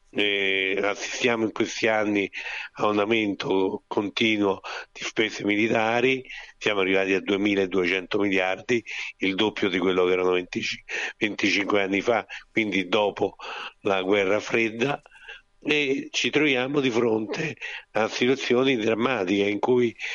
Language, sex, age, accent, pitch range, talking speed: Italian, male, 60-79, native, 100-120 Hz, 125 wpm